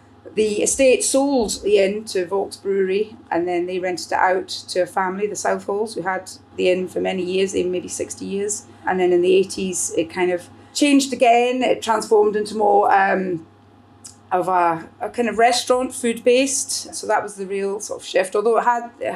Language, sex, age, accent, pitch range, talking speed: English, female, 30-49, British, 180-220 Hz, 200 wpm